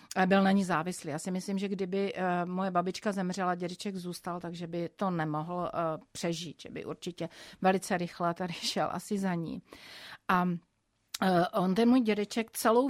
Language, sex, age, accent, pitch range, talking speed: Czech, female, 40-59, native, 180-215 Hz, 170 wpm